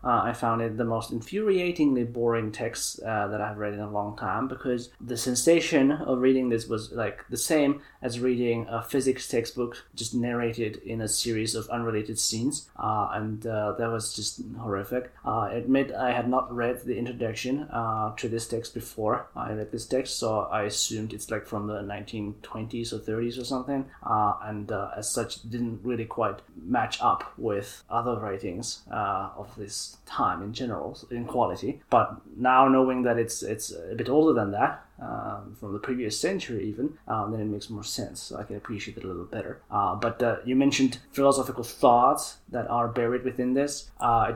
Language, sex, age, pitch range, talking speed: English, male, 20-39, 110-125 Hz, 190 wpm